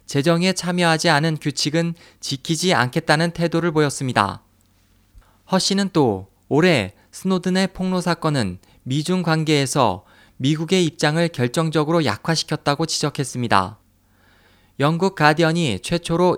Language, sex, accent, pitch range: Korean, male, native, 115-175 Hz